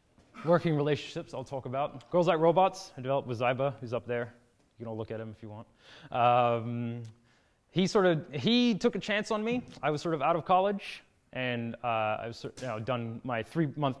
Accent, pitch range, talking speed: American, 120-160 Hz, 210 wpm